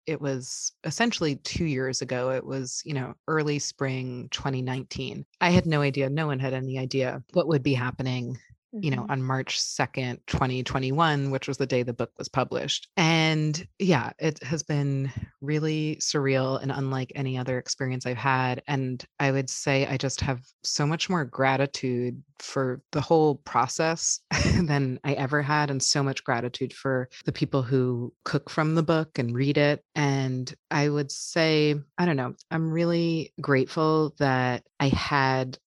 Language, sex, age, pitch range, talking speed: English, female, 30-49, 130-155 Hz, 170 wpm